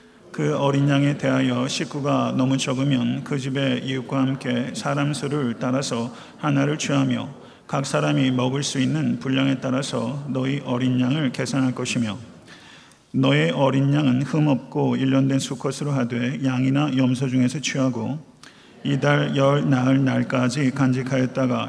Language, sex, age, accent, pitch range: Korean, male, 40-59, native, 125-140 Hz